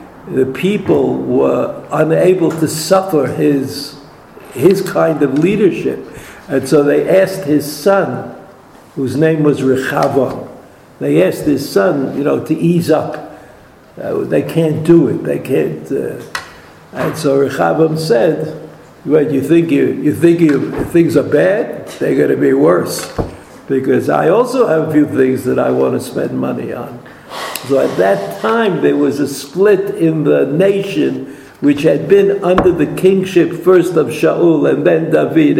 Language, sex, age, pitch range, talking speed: English, male, 60-79, 140-180 Hz, 160 wpm